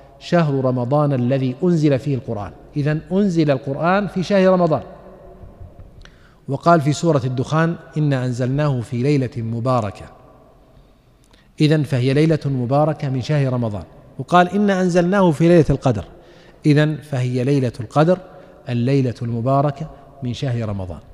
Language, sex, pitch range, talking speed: Arabic, male, 130-175 Hz, 120 wpm